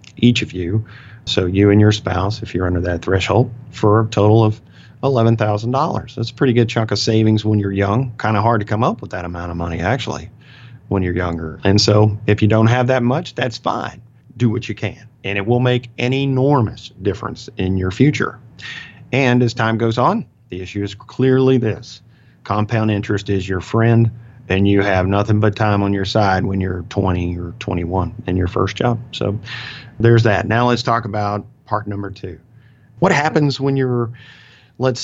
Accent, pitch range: American, 100-120 Hz